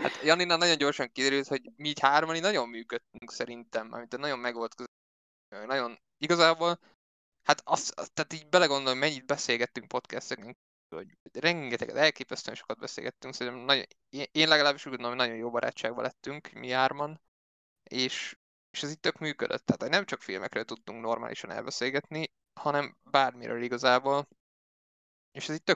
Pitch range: 120-145 Hz